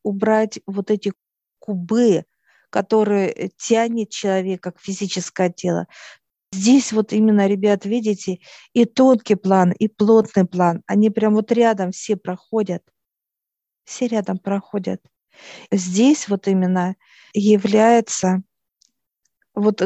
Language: Russian